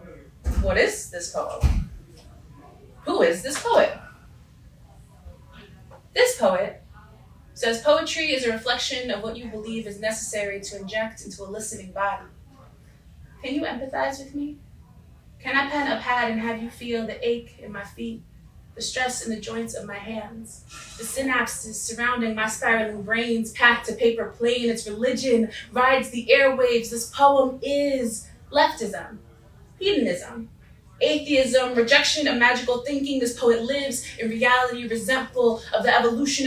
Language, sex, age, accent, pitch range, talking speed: English, female, 20-39, American, 225-260 Hz, 145 wpm